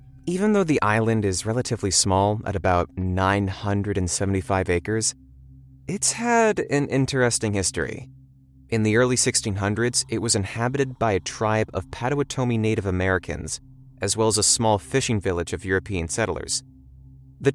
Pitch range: 90-130 Hz